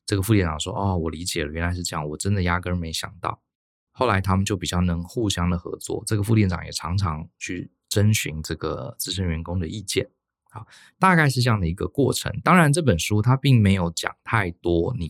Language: Chinese